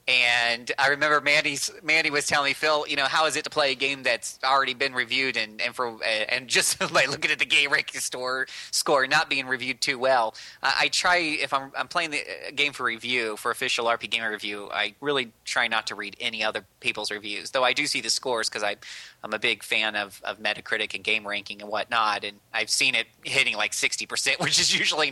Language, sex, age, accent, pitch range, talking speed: English, male, 20-39, American, 120-150 Hz, 230 wpm